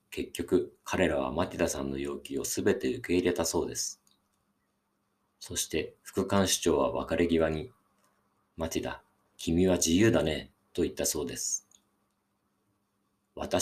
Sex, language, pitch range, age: male, Japanese, 80-95 Hz, 50-69